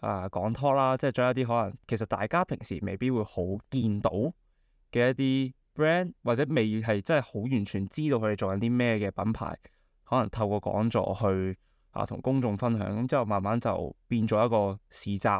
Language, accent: Chinese, native